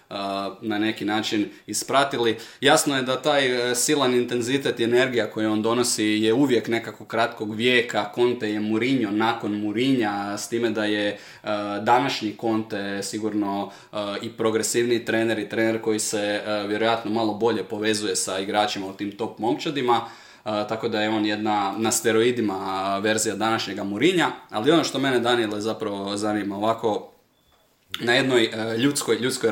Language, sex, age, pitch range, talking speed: Croatian, male, 20-39, 105-120 Hz, 145 wpm